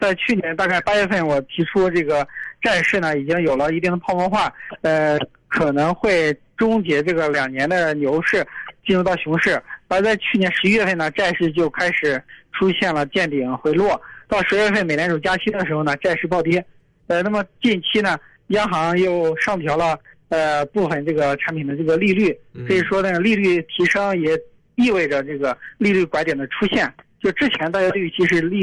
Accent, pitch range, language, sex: native, 155-190 Hz, Chinese, male